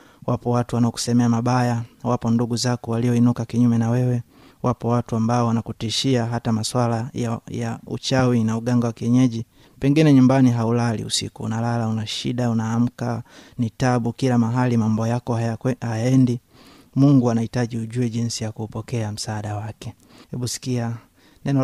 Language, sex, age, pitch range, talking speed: Swahili, male, 30-49, 115-125 Hz, 140 wpm